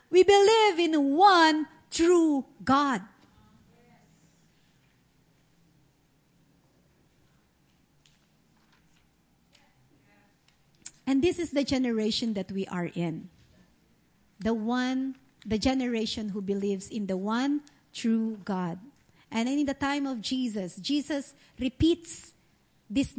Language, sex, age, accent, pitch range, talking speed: English, female, 50-69, Filipino, 205-295 Hz, 90 wpm